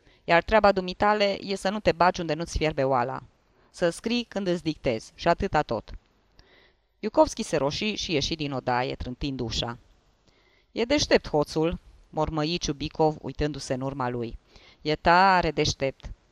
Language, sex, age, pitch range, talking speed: Romanian, female, 20-39, 145-205 Hz, 150 wpm